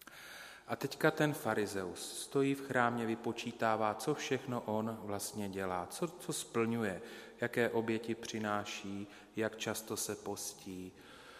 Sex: male